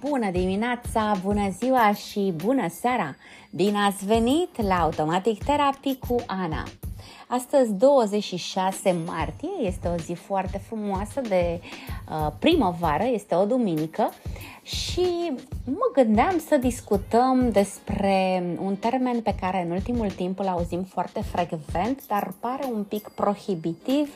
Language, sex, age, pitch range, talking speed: Romanian, female, 20-39, 180-240 Hz, 125 wpm